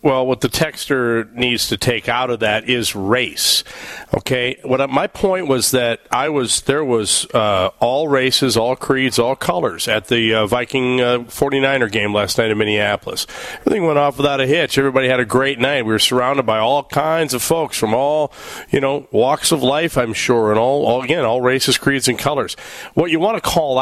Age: 40-59